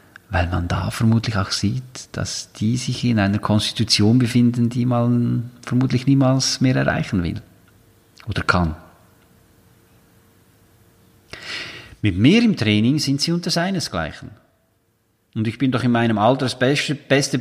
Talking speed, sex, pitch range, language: 140 wpm, male, 95-125 Hz, German